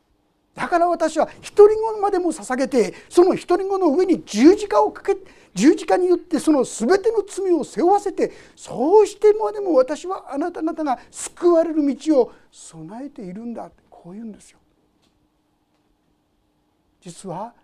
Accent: native